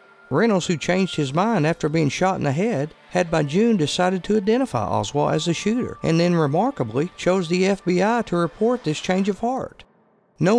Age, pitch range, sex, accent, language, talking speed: 50-69, 165-210 Hz, male, American, English, 195 wpm